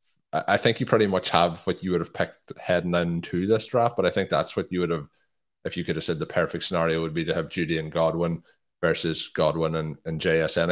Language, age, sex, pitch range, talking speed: English, 20-39, male, 85-95 Hz, 240 wpm